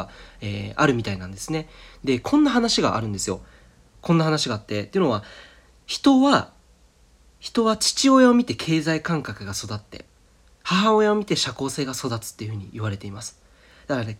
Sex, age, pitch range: male, 40-59, 105-180 Hz